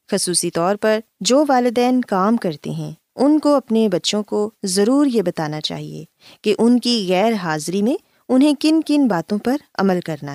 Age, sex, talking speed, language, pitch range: 20-39, female, 175 wpm, Urdu, 170-245 Hz